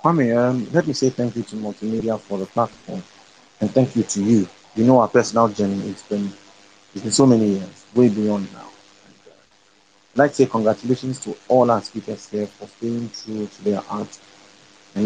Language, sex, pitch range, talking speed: English, male, 100-120 Hz, 185 wpm